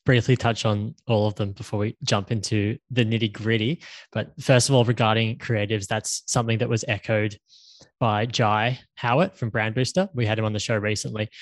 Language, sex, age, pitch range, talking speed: English, male, 10-29, 110-125 Hz, 195 wpm